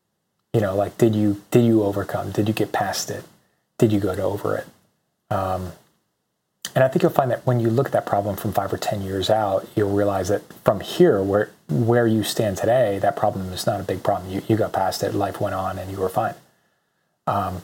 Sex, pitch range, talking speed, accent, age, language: male, 100-115 Hz, 230 wpm, American, 30-49, English